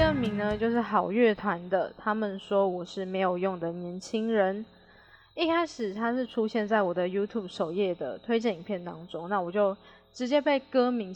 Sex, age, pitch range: female, 10-29, 190-235 Hz